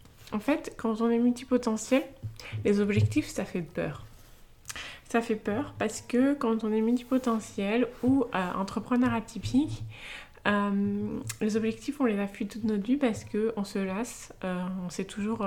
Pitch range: 165-230 Hz